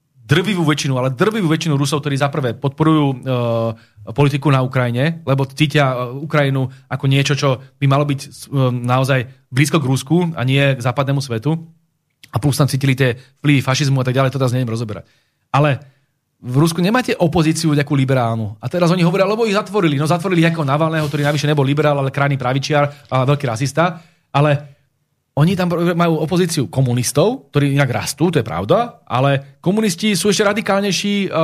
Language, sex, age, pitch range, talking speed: Slovak, male, 30-49, 135-175 Hz, 175 wpm